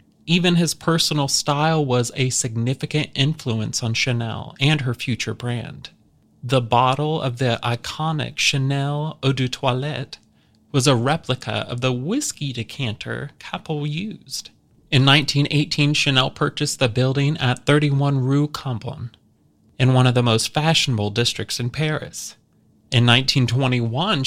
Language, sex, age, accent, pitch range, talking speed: English, male, 30-49, American, 125-150 Hz, 130 wpm